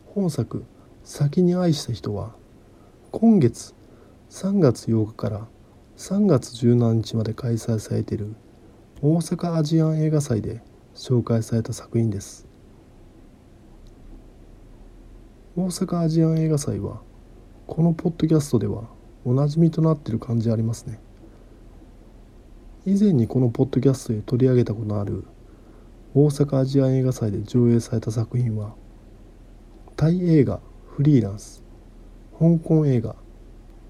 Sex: male